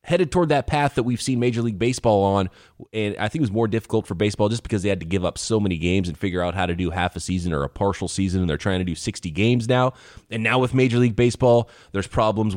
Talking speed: 280 wpm